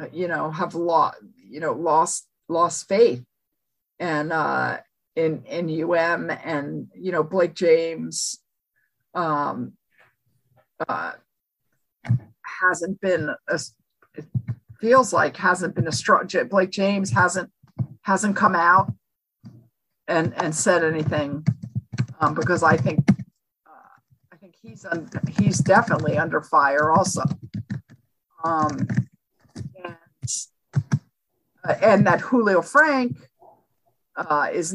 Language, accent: English, American